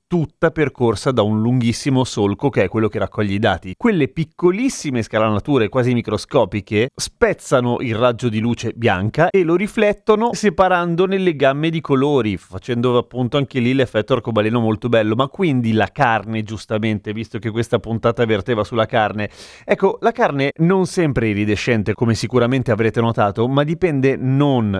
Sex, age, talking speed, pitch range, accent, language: male, 30-49, 155 wpm, 110-170 Hz, native, Italian